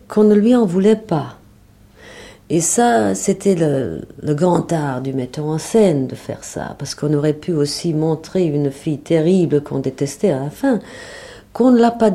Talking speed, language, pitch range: 190 wpm, French, 135-205 Hz